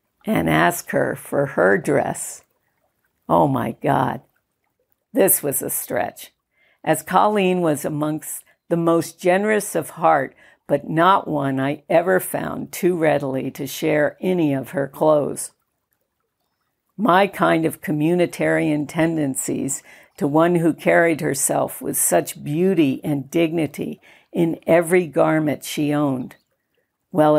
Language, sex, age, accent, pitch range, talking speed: English, female, 60-79, American, 145-175 Hz, 125 wpm